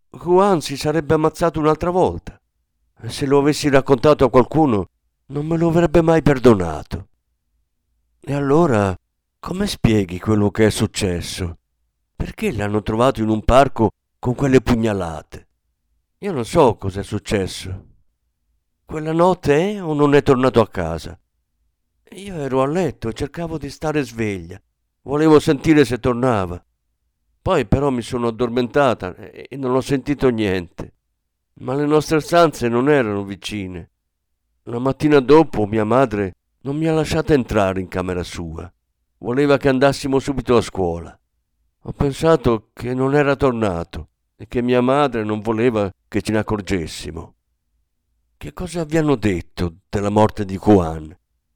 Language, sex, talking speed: Italian, male, 140 wpm